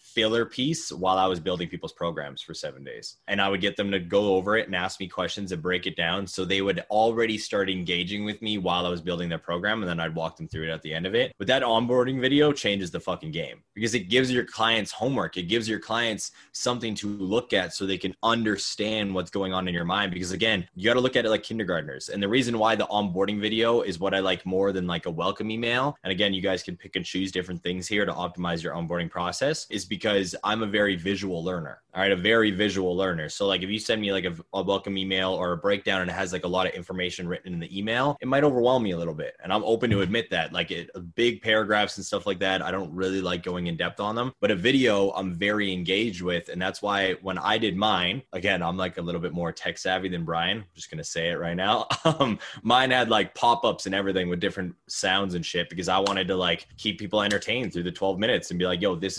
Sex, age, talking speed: male, 20-39, 260 wpm